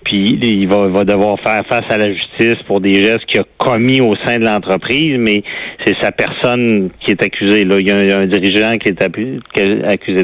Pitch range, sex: 100-130 Hz, male